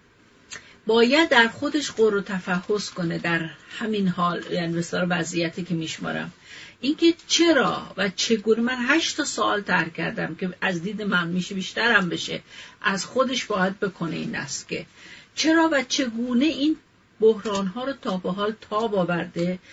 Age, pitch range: 50-69, 180-220 Hz